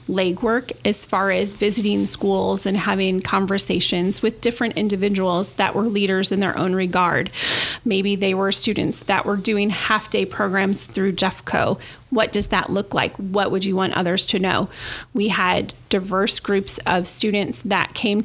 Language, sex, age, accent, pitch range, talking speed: English, female, 30-49, American, 190-220 Hz, 165 wpm